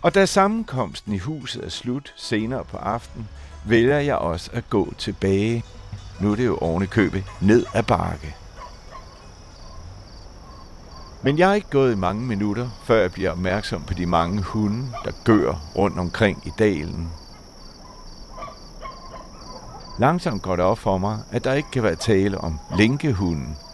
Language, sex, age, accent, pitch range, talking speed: Danish, male, 60-79, native, 95-125 Hz, 150 wpm